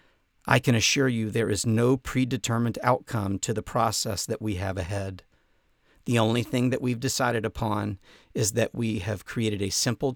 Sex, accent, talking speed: male, American, 175 wpm